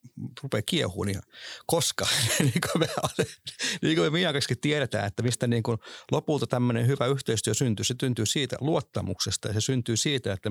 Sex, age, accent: male, 50-69, native